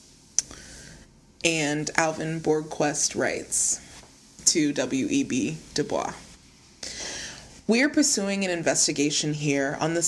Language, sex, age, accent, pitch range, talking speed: English, female, 20-39, American, 160-210 Hz, 90 wpm